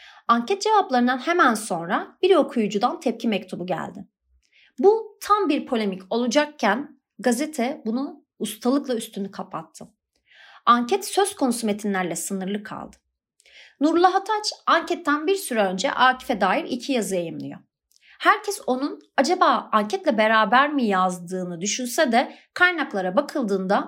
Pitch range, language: 205-280 Hz, Turkish